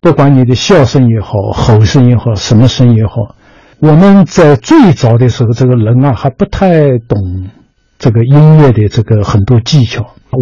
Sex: male